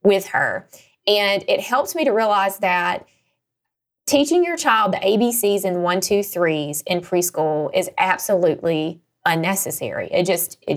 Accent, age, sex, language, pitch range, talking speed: American, 20-39, female, English, 175-220 Hz, 145 wpm